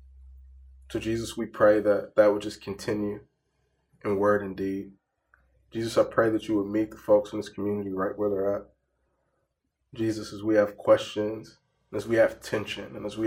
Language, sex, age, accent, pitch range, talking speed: English, male, 20-39, American, 100-110 Hz, 190 wpm